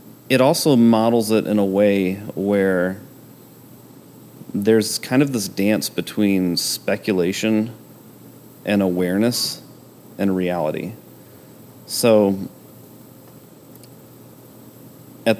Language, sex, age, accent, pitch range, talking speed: English, male, 30-49, American, 95-110 Hz, 80 wpm